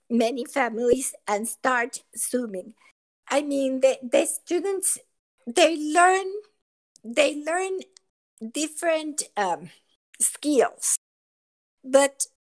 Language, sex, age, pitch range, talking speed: English, female, 50-69, 220-285 Hz, 85 wpm